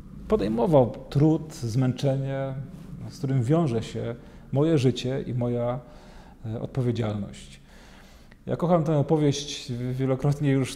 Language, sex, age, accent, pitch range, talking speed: Polish, male, 40-59, native, 115-145 Hz, 100 wpm